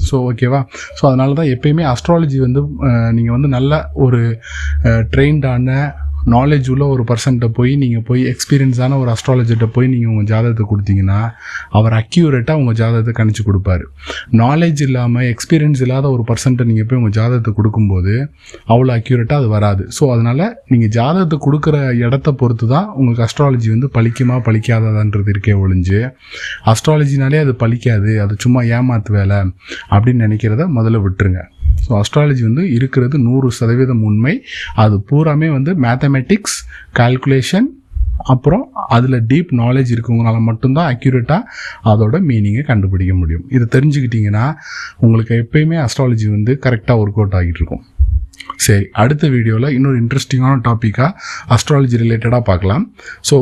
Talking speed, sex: 130 wpm, male